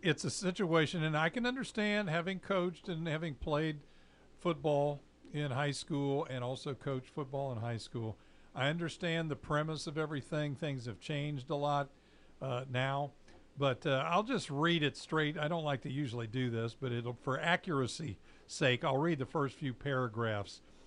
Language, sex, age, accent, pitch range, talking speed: English, male, 50-69, American, 125-165 Hz, 175 wpm